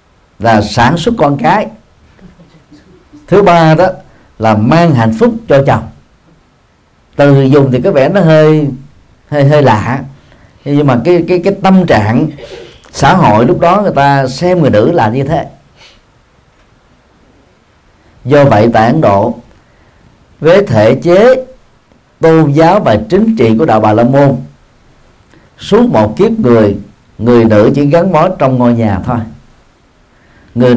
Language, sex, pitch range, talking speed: Vietnamese, male, 115-165 Hz, 145 wpm